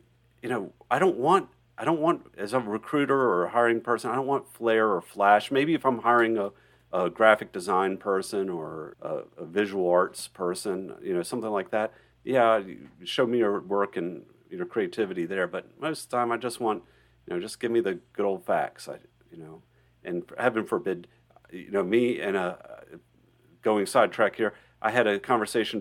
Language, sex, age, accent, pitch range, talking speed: English, male, 40-59, American, 90-120 Hz, 200 wpm